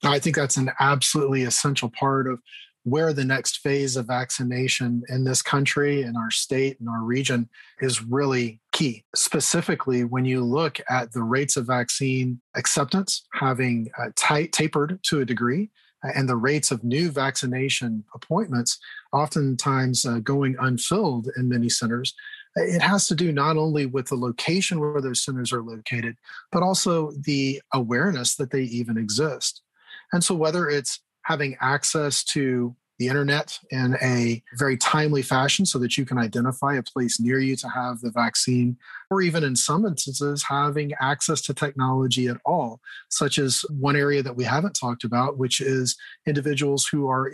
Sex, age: male, 40-59